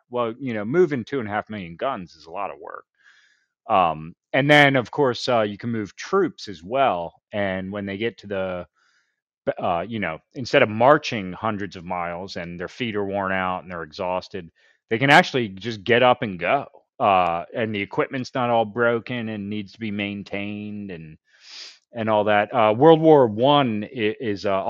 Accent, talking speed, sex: American, 200 wpm, male